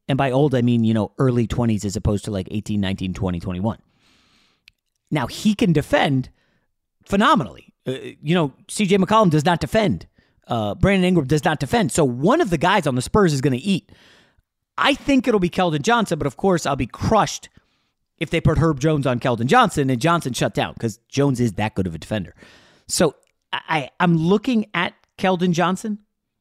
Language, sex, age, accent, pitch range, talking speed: English, male, 30-49, American, 125-180 Hz, 200 wpm